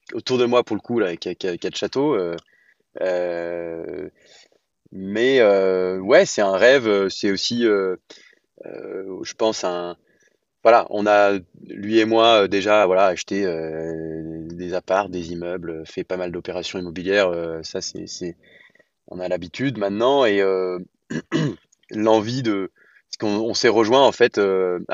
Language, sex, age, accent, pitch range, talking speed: French, male, 20-39, French, 90-110 Hz, 155 wpm